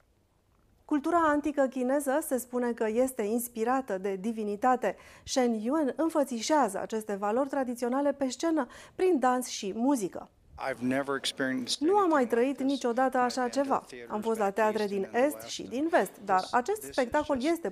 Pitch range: 215-295 Hz